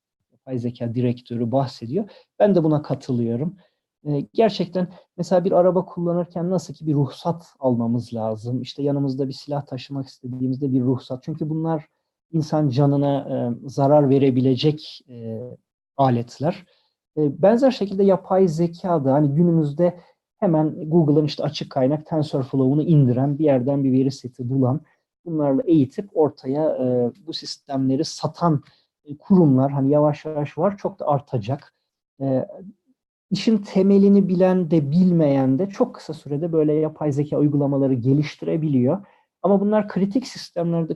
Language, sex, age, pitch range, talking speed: Turkish, male, 50-69, 130-170 Hz, 135 wpm